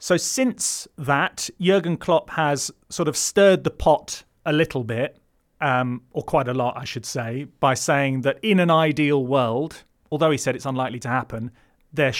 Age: 30-49